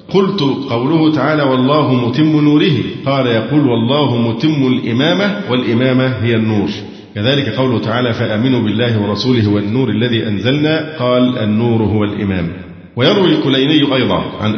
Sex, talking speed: male, 130 wpm